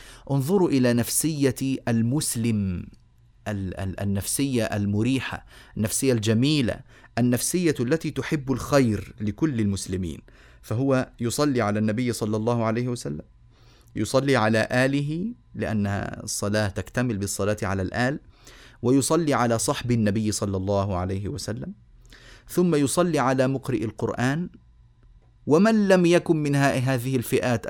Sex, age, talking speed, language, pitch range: male, 30-49, 110 wpm, Arabic, 105-135 Hz